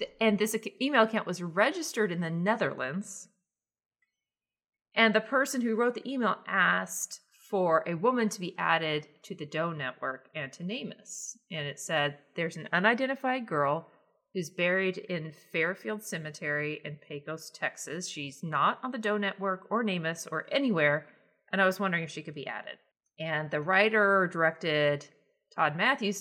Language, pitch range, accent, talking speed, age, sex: English, 155-210 Hz, American, 160 wpm, 40-59, female